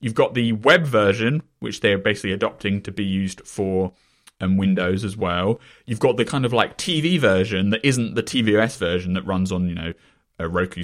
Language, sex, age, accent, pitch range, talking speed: English, male, 20-39, British, 100-140 Hz, 200 wpm